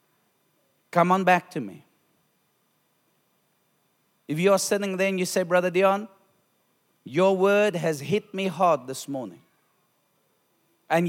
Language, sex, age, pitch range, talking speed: English, male, 40-59, 165-195 Hz, 125 wpm